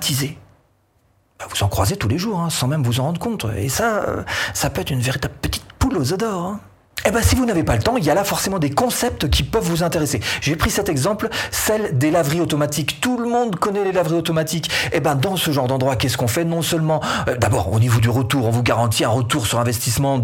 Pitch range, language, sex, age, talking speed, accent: 120-175 Hz, French, male, 40-59, 250 wpm, French